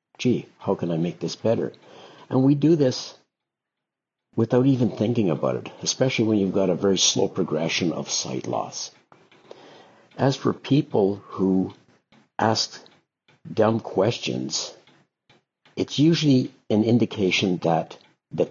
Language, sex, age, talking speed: English, male, 60-79, 130 wpm